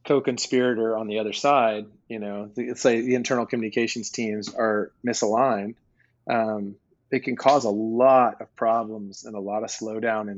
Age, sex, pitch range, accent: 30-49, male, 105-125 Hz, American